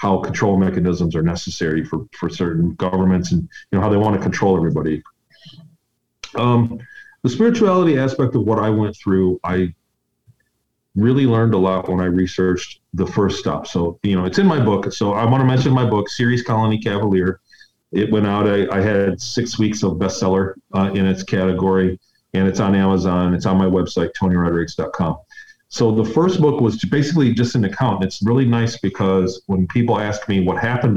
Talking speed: 190 wpm